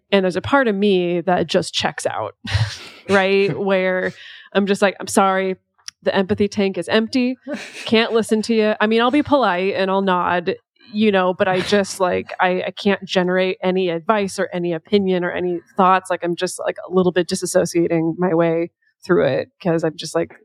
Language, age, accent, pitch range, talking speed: English, 20-39, American, 175-195 Hz, 200 wpm